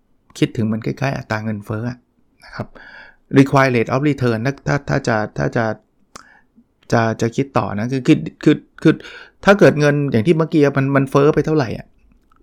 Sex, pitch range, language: male, 115-145 Hz, Thai